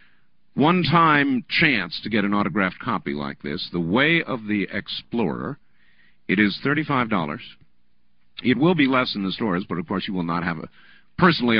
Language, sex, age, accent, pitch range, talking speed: English, male, 50-69, American, 90-145 Hz, 170 wpm